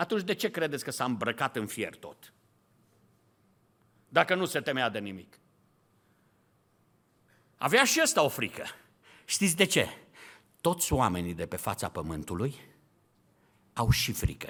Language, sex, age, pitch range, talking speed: Romanian, male, 50-69, 130-185 Hz, 135 wpm